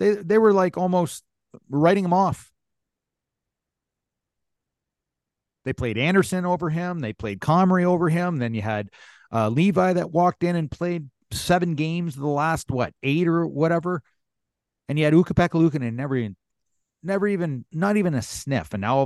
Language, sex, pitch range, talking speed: English, male, 120-175 Hz, 165 wpm